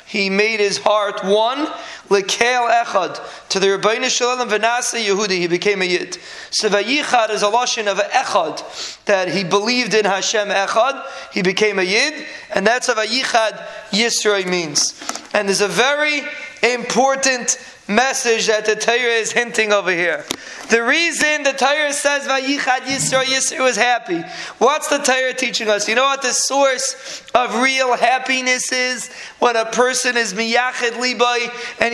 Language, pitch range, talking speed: English, 225-265 Hz, 150 wpm